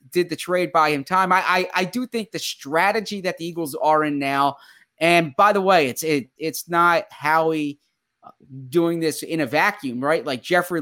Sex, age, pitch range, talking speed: male, 30-49, 145-170 Hz, 200 wpm